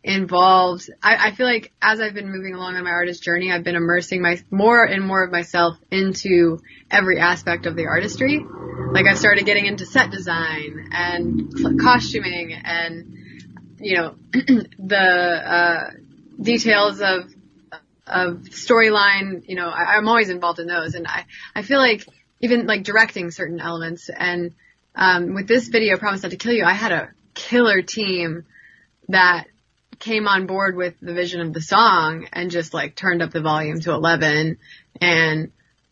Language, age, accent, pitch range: English, 20-39, American, 170-205 Hz